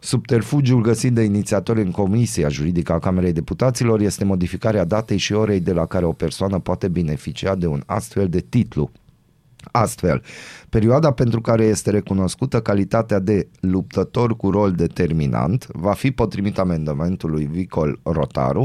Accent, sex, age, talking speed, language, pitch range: native, male, 30-49, 145 wpm, Romanian, 85-115 Hz